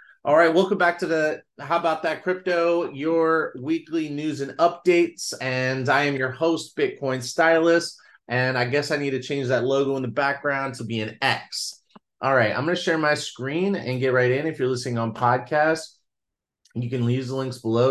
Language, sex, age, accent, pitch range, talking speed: English, male, 30-49, American, 120-160 Hz, 205 wpm